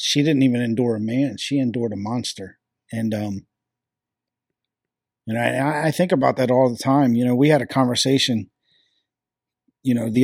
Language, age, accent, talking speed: English, 40-59, American, 175 wpm